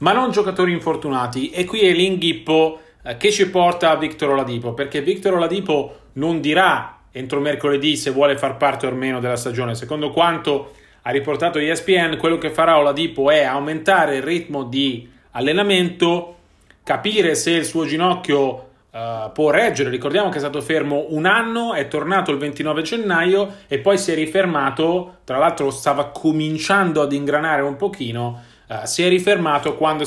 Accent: native